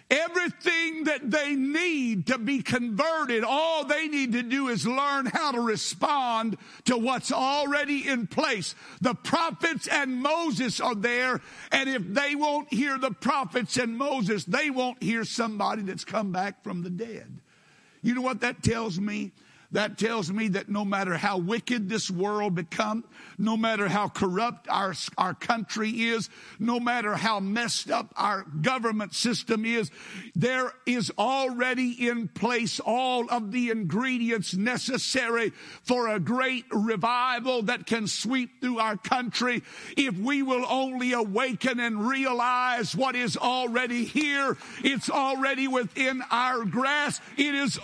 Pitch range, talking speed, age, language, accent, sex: 215-265 Hz, 150 wpm, 60-79, English, American, male